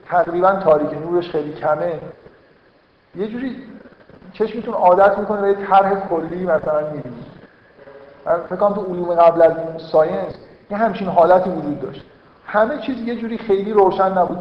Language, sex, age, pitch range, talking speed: Persian, male, 50-69, 160-190 Hz, 150 wpm